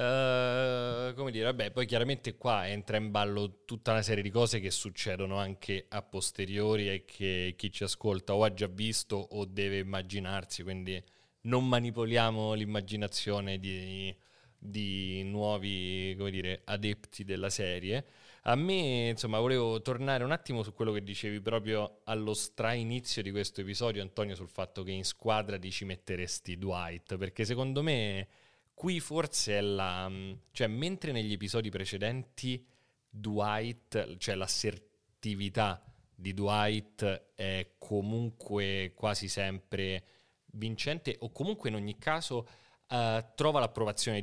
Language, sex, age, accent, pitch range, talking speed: Italian, male, 30-49, native, 100-120 Hz, 135 wpm